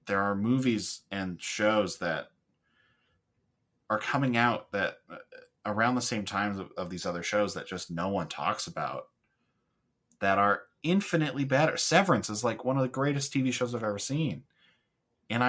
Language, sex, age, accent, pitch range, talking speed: English, male, 30-49, American, 100-130 Hz, 165 wpm